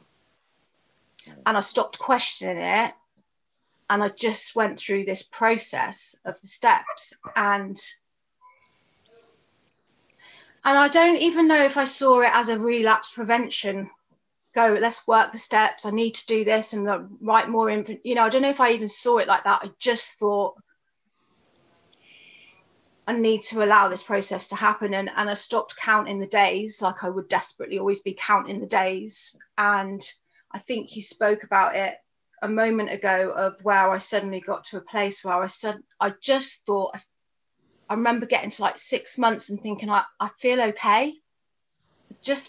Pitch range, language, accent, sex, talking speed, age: 200-235 Hz, English, British, female, 175 wpm, 30-49